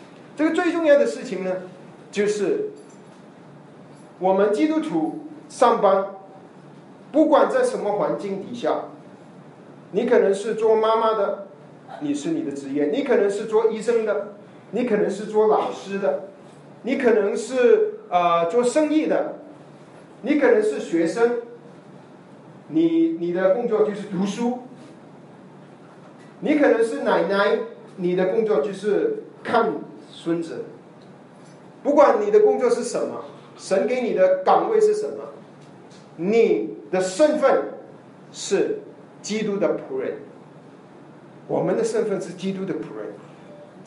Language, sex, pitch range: Chinese, male, 195-315 Hz